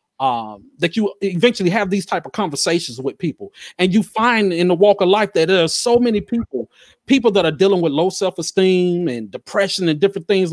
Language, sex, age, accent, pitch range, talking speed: English, male, 40-59, American, 155-200 Hz, 210 wpm